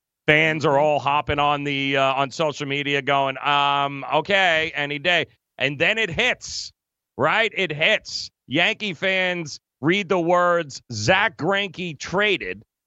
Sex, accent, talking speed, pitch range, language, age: male, American, 140 wpm, 150-230 Hz, English, 40-59